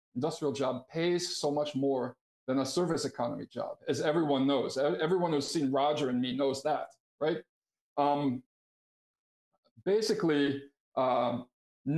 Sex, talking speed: male, 130 wpm